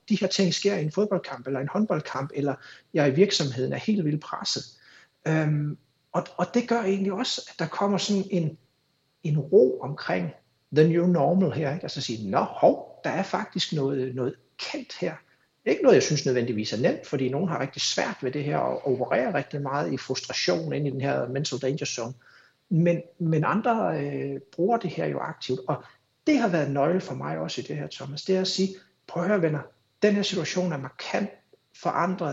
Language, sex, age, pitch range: Danish, male, 60-79, 135-180 Hz